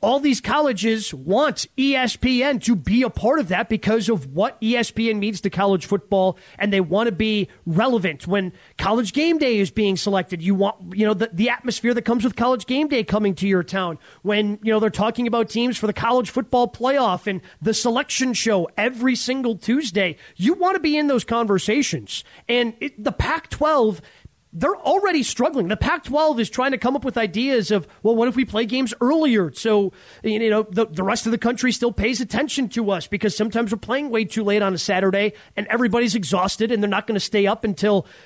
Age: 30-49